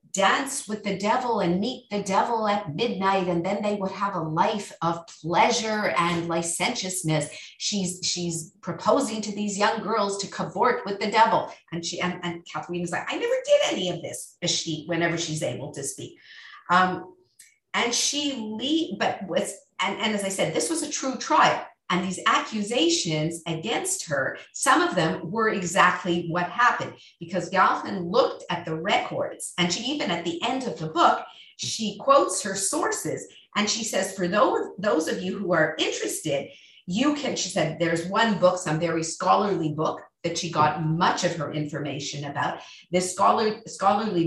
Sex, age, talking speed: female, 50-69, 180 wpm